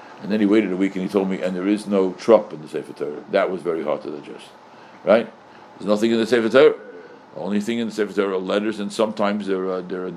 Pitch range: 100-145 Hz